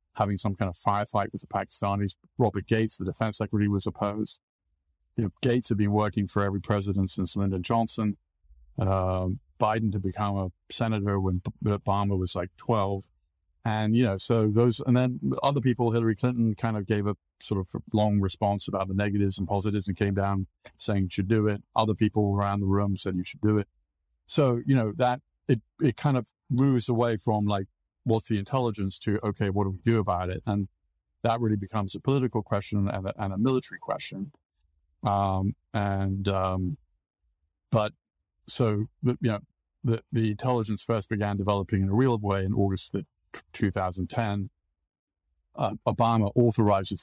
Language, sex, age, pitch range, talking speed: English, male, 50-69, 95-110 Hz, 180 wpm